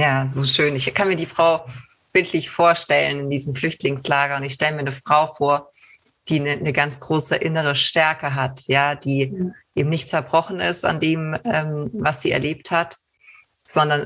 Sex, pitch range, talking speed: female, 140-160 Hz, 180 wpm